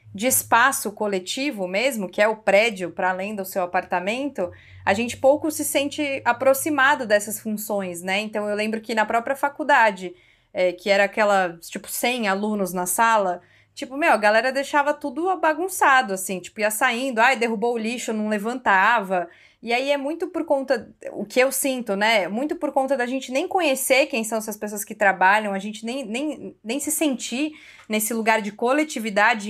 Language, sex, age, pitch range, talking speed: Portuguese, female, 20-39, 205-270 Hz, 180 wpm